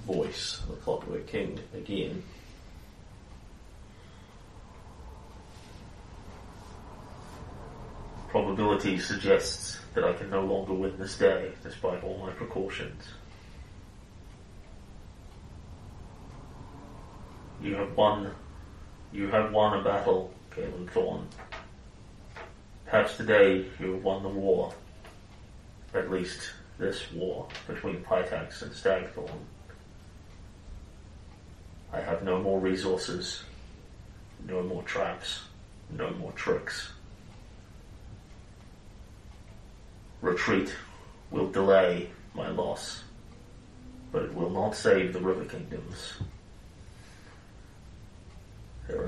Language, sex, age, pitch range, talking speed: English, male, 30-49, 90-100 Hz, 85 wpm